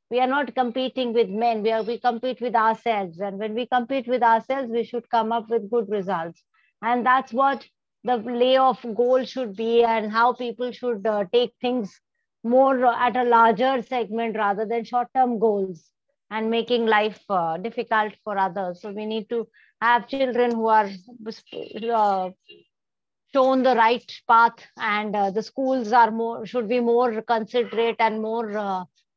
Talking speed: 170 wpm